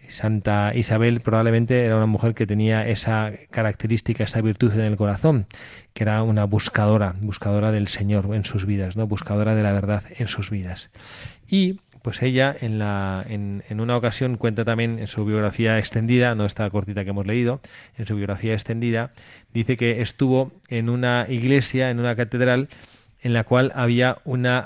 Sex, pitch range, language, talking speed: male, 105-120 Hz, Spanish, 175 wpm